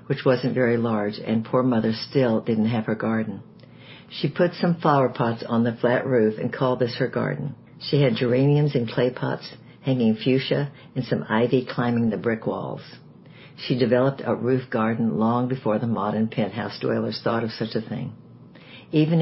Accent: American